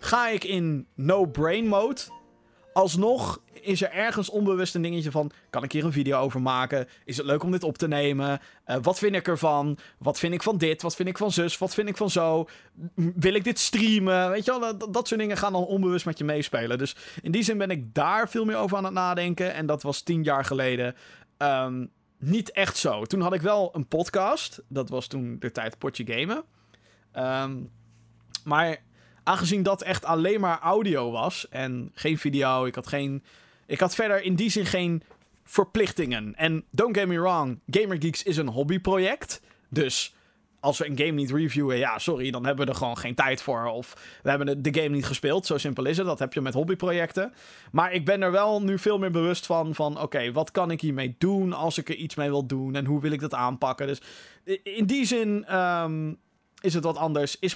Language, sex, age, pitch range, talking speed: Dutch, male, 20-39, 140-190 Hz, 210 wpm